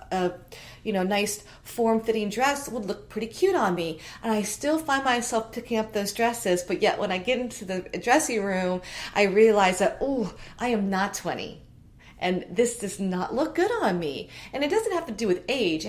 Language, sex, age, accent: English, female, 30-49, American